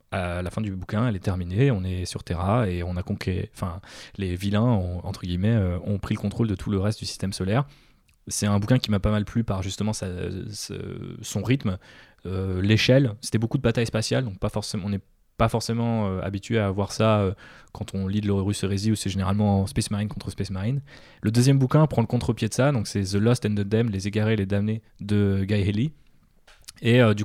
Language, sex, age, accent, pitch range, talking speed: French, male, 20-39, French, 100-115 Hz, 235 wpm